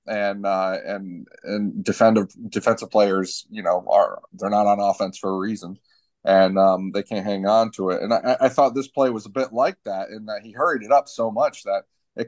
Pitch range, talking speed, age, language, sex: 95-115 Hz, 225 wpm, 30-49, English, male